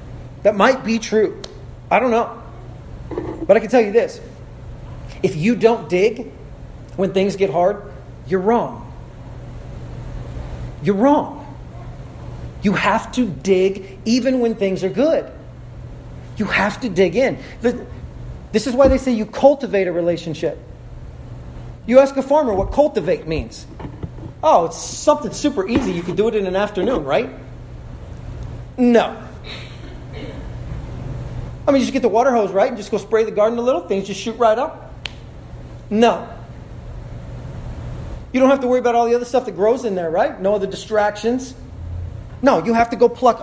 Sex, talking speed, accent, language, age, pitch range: male, 160 wpm, American, English, 40-59, 165-240 Hz